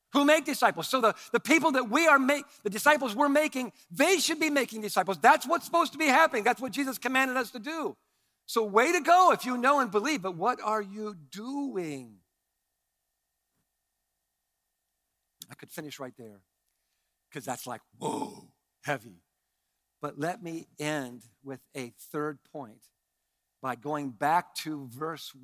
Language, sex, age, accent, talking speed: English, male, 50-69, American, 165 wpm